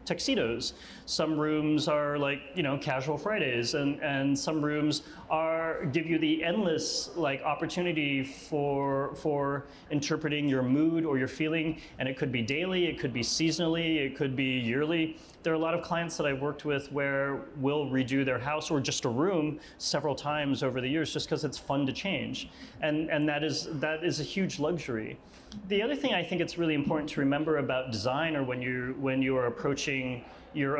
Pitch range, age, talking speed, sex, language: 135-165 Hz, 30-49, 195 wpm, male, English